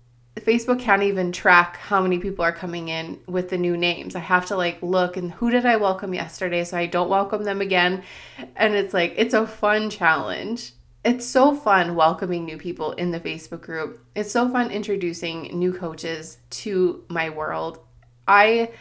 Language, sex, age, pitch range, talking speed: English, female, 20-39, 160-195 Hz, 185 wpm